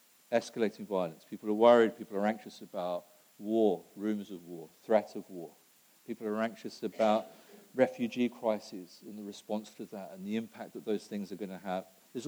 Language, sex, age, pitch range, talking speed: English, male, 50-69, 105-130 Hz, 185 wpm